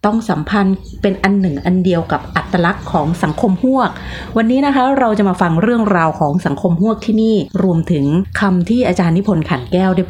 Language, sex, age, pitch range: Thai, female, 30-49, 155-195 Hz